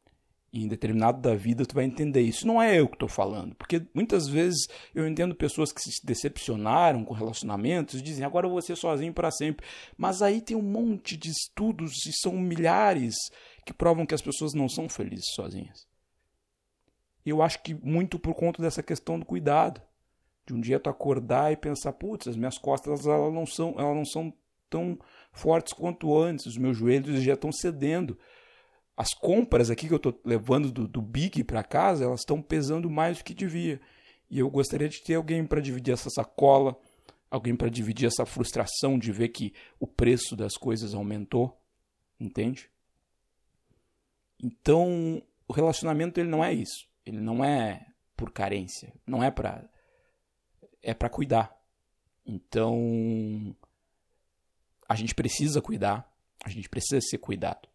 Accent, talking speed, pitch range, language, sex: Brazilian, 165 wpm, 115-160 Hz, Portuguese, male